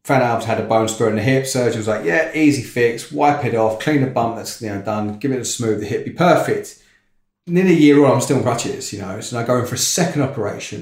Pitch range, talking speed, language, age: 105-140 Hz, 285 wpm, English, 30-49